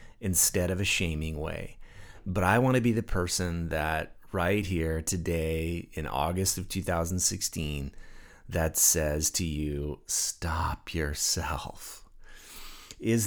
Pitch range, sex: 80-100 Hz, male